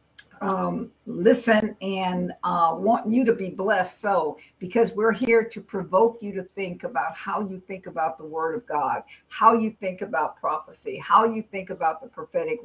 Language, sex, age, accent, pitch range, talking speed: English, female, 60-79, American, 185-230 Hz, 180 wpm